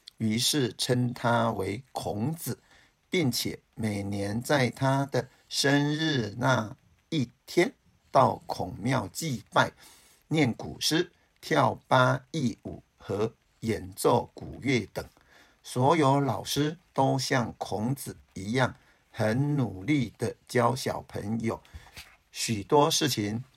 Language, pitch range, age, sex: Chinese, 110-140 Hz, 50-69, male